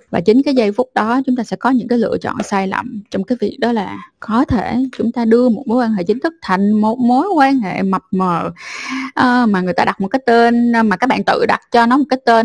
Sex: female